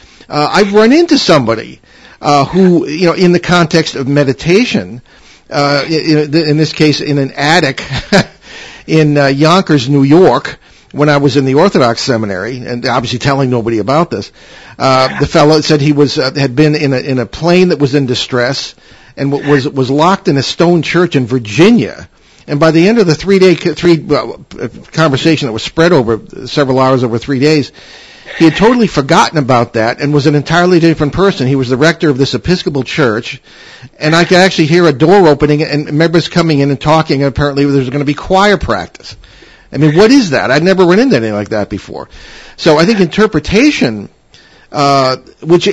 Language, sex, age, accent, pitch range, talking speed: English, male, 50-69, American, 135-170 Hz, 195 wpm